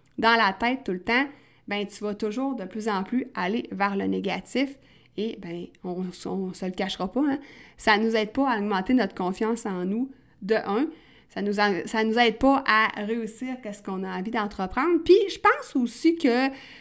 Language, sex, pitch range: French, female, 200-270 Hz